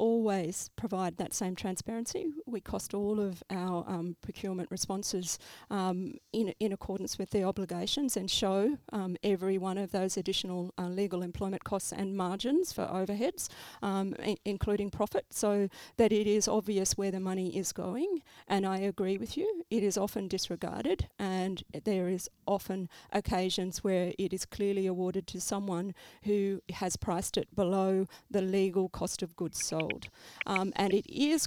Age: 40-59